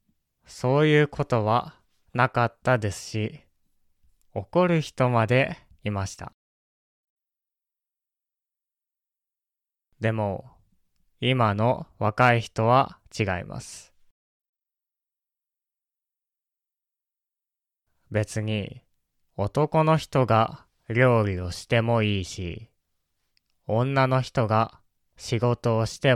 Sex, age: male, 20-39